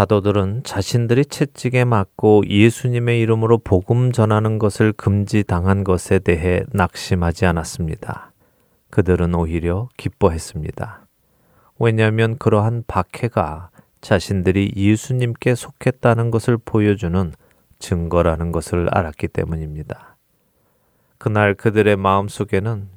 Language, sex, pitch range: Korean, male, 85-115 Hz